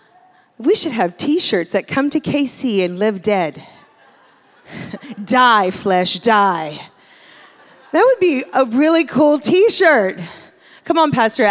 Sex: female